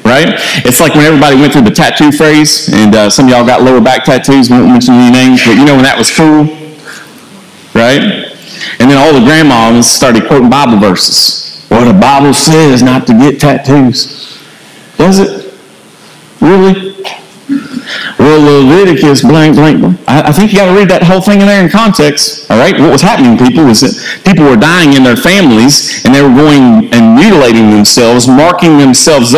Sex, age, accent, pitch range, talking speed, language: male, 40-59, American, 130-185 Hz, 185 wpm, English